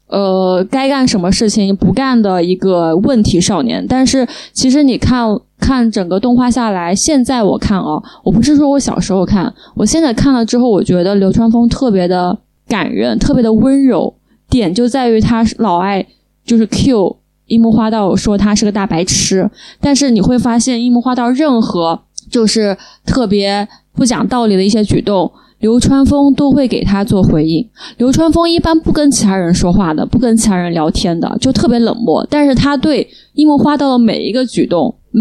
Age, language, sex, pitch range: 20-39, Chinese, female, 205-270 Hz